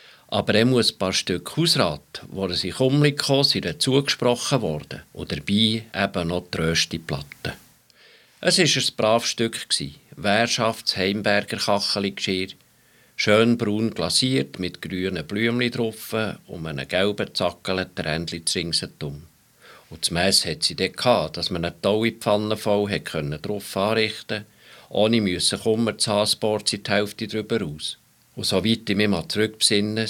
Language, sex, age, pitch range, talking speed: German, male, 50-69, 95-115 Hz, 150 wpm